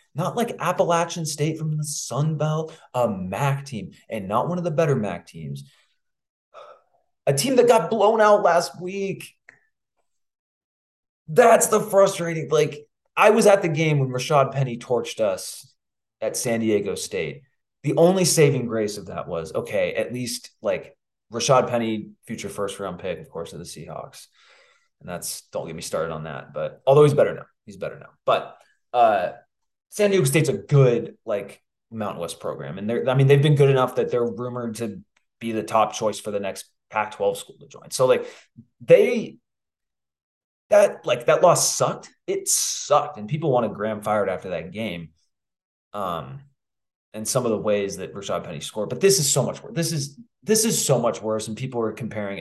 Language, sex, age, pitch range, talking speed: English, male, 20-39, 110-175 Hz, 185 wpm